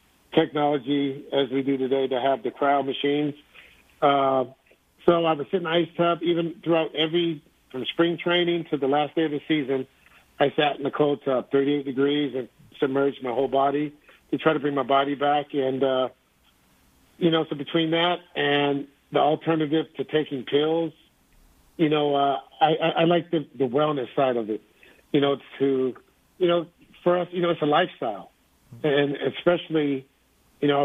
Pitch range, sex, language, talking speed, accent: 135-155 Hz, male, English, 185 wpm, American